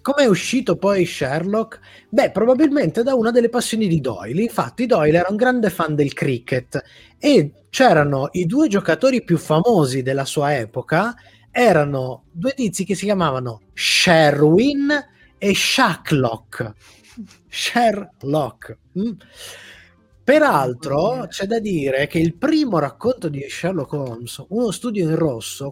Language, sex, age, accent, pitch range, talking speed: Italian, male, 30-49, native, 135-220 Hz, 130 wpm